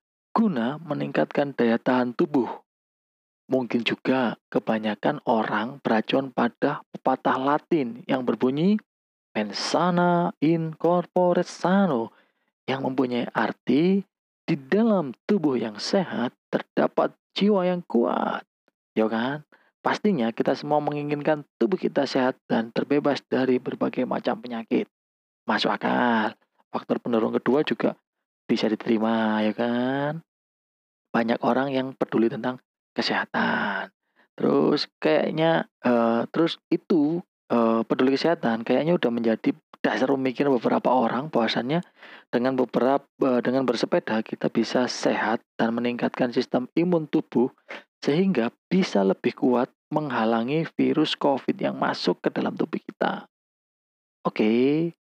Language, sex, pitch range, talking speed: Indonesian, male, 115-165 Hz, 110 wpm